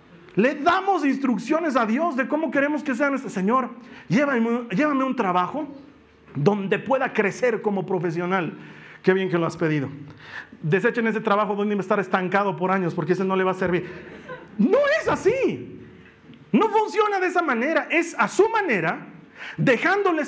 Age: 40-59